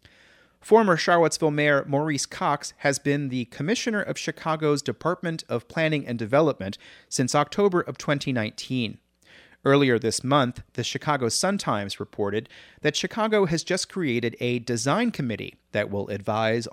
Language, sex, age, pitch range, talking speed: English, male, 30-49, 115-160 Hz, 135 wpm